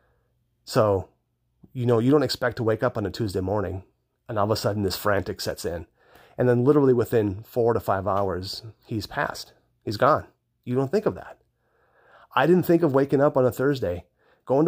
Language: English